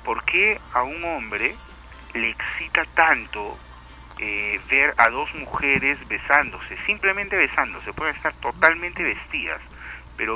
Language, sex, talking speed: Spanish, male, 120 wpm